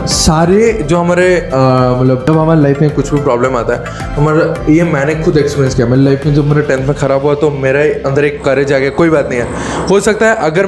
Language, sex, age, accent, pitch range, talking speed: Hindi, male, 10-29, native, 145-180 Hz, 230 wpm